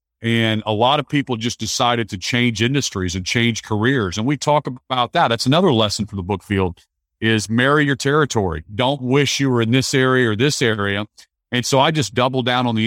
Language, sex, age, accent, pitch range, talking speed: English, male, 40-59, American, 105-125 Hz, 220 wpm